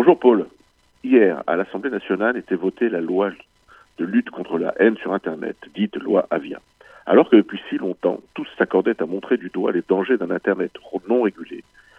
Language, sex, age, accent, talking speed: French, male, 60-79, French, 185 wpm